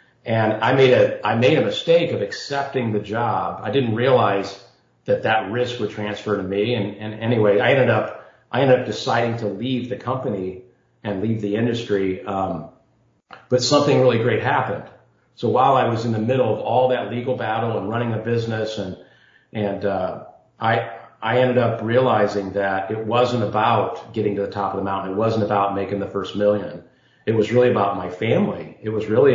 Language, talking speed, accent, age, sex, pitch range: English, 200 wpm, American, 40-59, male, 105-130 Hz